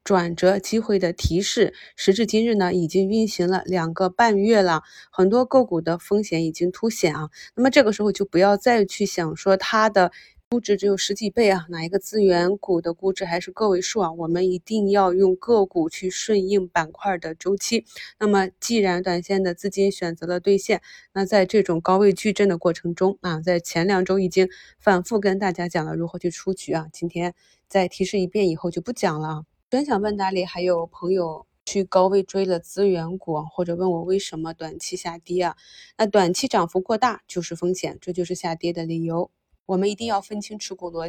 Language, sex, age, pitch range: Chinese, female, 20-39, 170-200 Hz